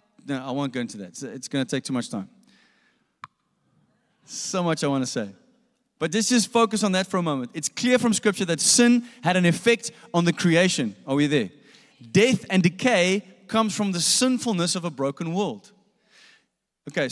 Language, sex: English, male